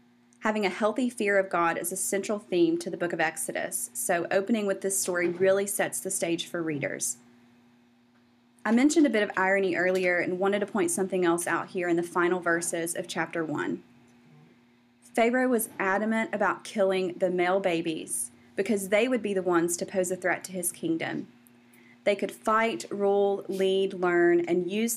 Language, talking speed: English, 185 wpm